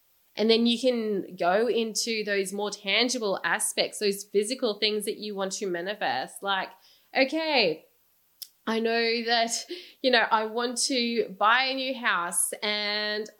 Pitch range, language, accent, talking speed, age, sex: 205-260 Hz, English, Australian, 150 wpm, 20-39, female